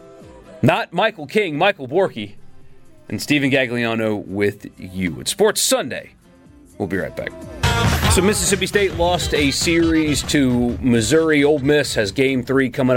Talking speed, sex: 145 wpm, male